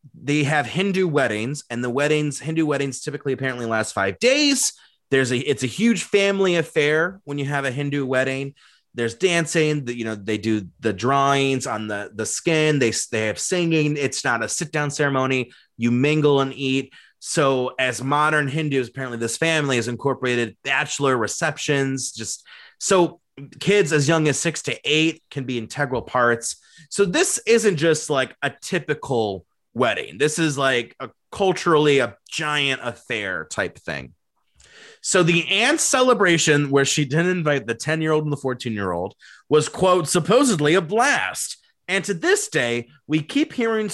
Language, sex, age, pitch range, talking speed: English, male, 30-49, 130-165 Hz, 170 wpm